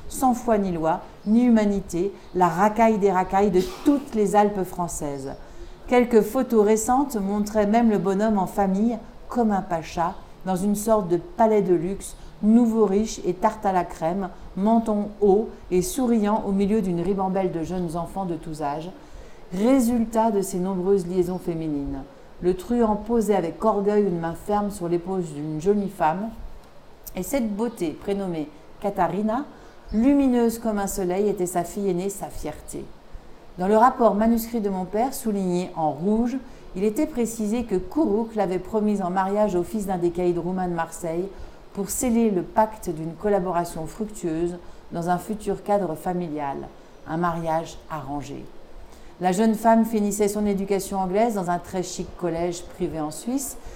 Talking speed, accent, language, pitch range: 165 wpm, French, French, 175-220 Hz